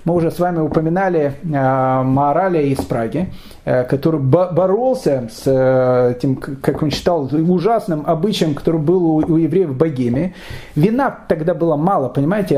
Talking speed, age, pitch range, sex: 155 wpm, 30-49, 145-200 Hz, male